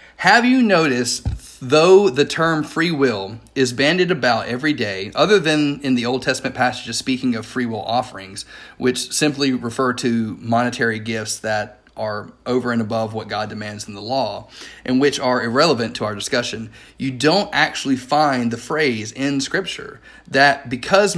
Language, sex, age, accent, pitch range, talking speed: English, male, 40-59, American, 115-155 Hz, 165 wpm